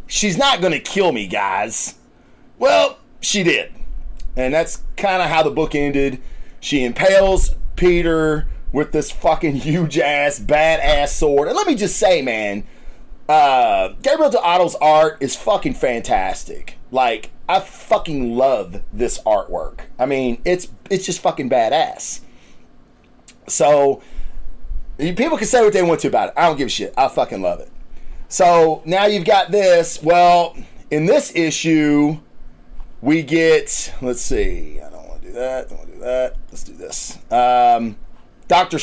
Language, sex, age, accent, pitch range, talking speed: English, male, 30-49, American, 140-185 Hz, 155 wpm